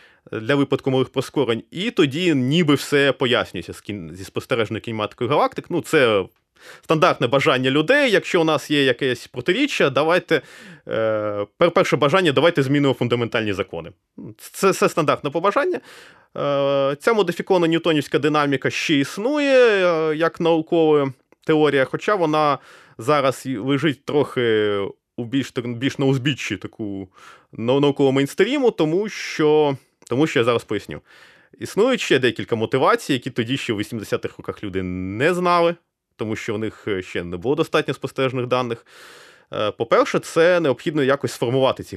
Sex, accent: male, native